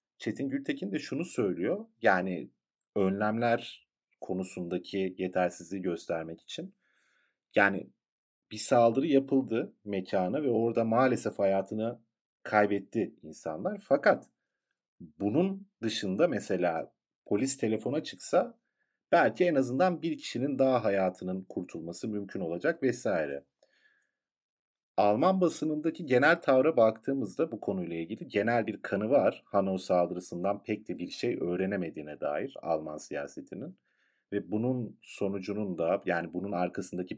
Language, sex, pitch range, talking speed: Turkish, male, 90-115 Hz, 110 wpm